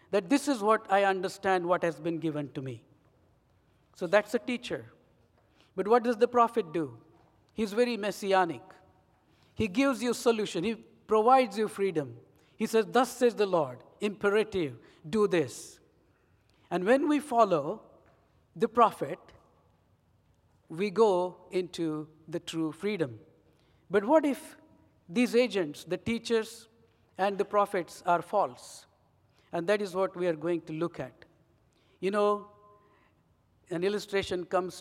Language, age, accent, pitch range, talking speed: English, 60-79, Indian, 165-210 Hz, 140 wpm